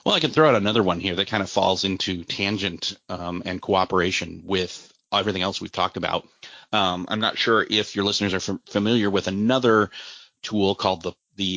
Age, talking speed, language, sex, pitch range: 30-49, 195 wpm, English, male, 90-110 Hz